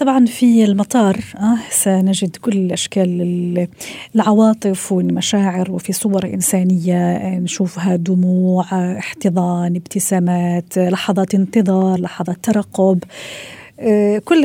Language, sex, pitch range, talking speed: Arabic, female, 185-220 Hz, 85 wpm